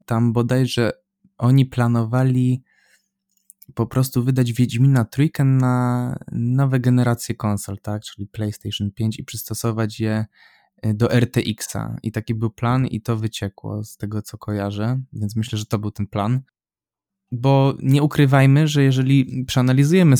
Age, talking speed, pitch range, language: 20-39, 135 wpm, 110-125 Hz, Polish